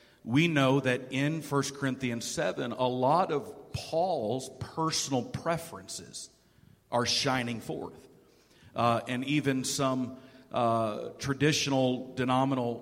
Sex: male